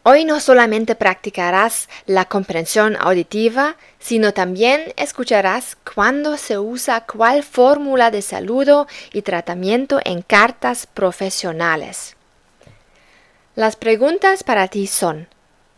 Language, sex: German, female